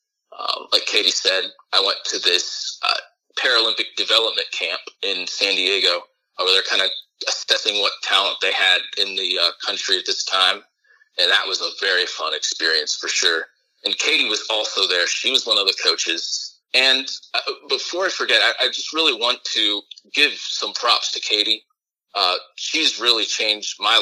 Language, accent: English, American